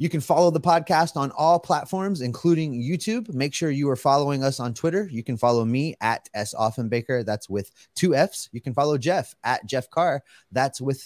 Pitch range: 120-160 Hz